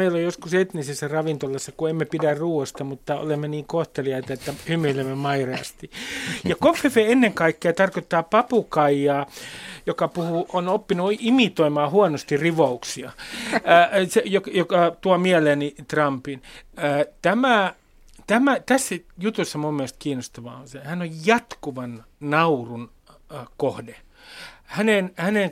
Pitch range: 140-185 Hz